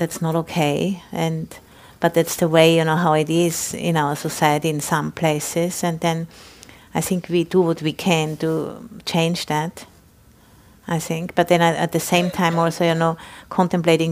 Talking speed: 185 wpm